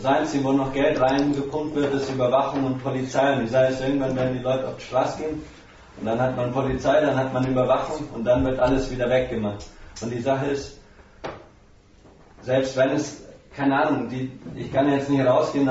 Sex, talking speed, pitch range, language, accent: male, 205 wpm, 125-140 Hz, German, German